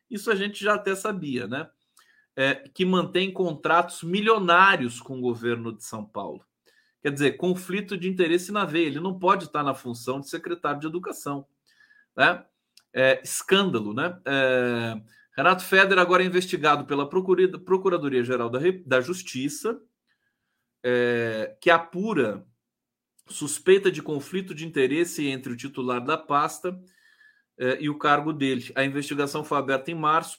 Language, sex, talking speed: Portuguese, male, 145 wpm